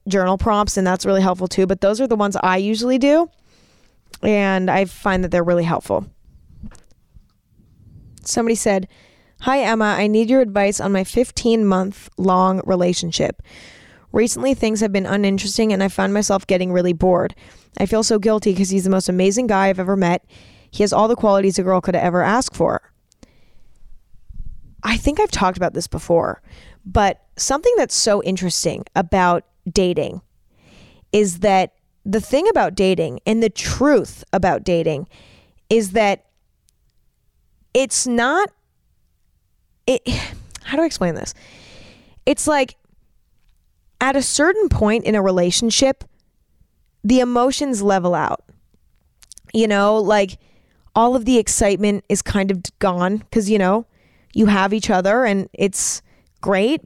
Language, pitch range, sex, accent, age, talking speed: English, 185-225 Hz, female, American, 10-29, 150 wpm